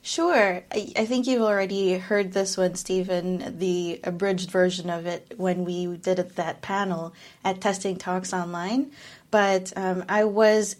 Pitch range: 180-210 Hz